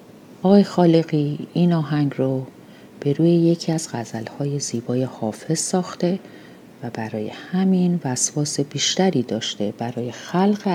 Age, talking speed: 40-59, 115 wpm